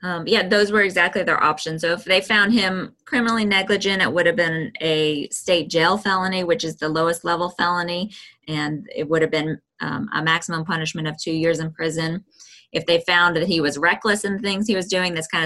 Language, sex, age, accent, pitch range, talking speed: English, female, 20-39, American, 160-185 Hz, 215 wpm